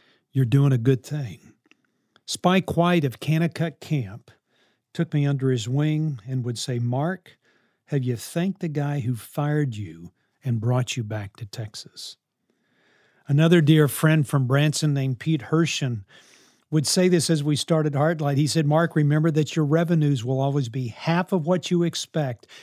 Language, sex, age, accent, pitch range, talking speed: English, male, 50-69, American, 130-160 Hz, 165 wpm